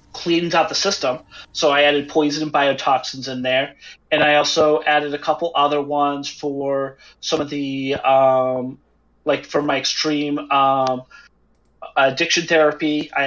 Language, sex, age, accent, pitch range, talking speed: English, male, 30-49, American, 135-160 Hz, 150 wpm